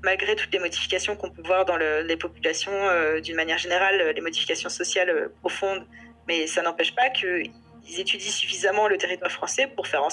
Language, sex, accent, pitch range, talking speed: French, female, French, 170-280 Hz, 200 wpm